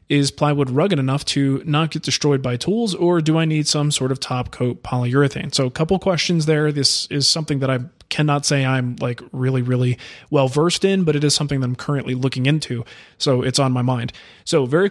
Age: 20-39